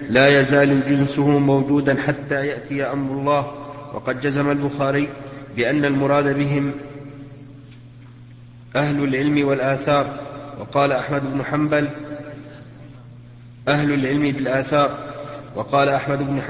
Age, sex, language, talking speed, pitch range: 40-59, male, Arabic, 100 wpm, 140-145 Hz